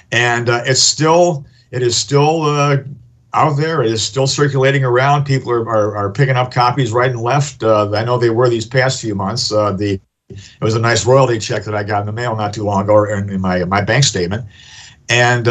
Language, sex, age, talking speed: English, male, 50-69, 230 wpm